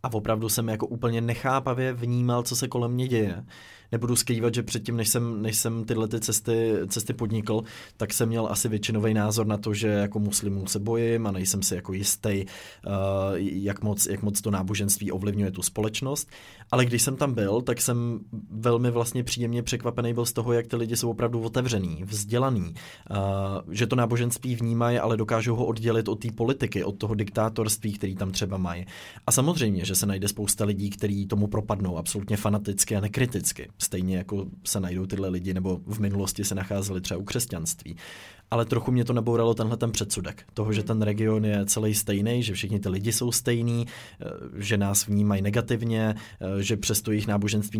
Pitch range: 100-120 Hz